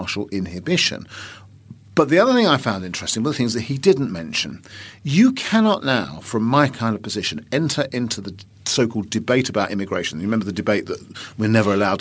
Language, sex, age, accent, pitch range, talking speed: English, male, 50-69, British, 100-135 Hz, 190 wpm